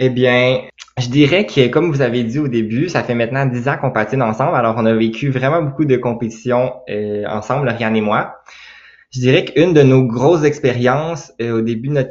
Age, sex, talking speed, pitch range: 20-39, male, 220 wpm, 115-130 Hz